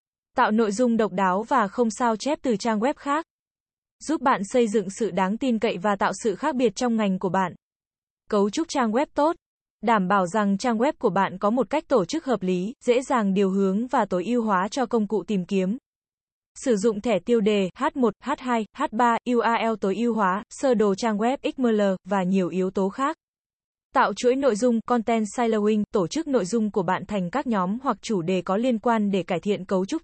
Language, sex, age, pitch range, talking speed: Vietnamese, female, 20-39, 200-245 Hz, 220 wpm